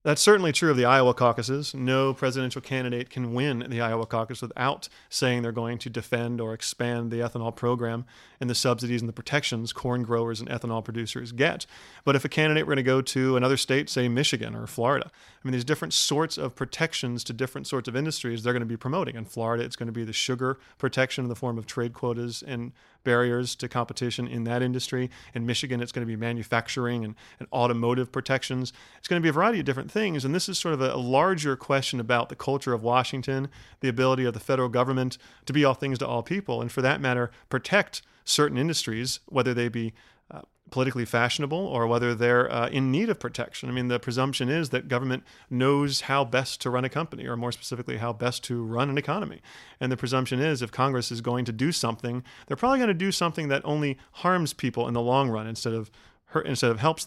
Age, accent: 40-59, American